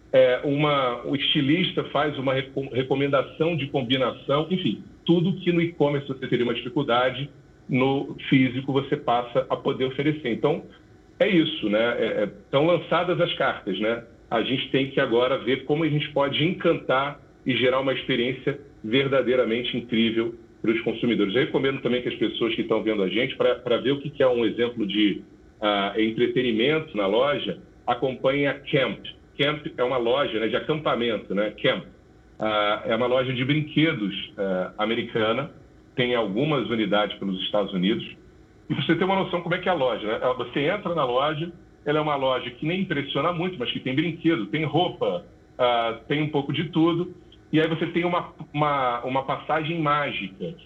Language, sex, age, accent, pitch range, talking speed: Portuguese, male, 40-59, Brazilian, 120-160 Hz, 170 wpm